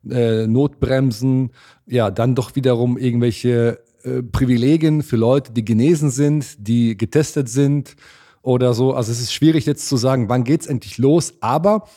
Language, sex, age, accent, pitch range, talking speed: German, male, 40-59, German, 120-150 Hz, 160 wpm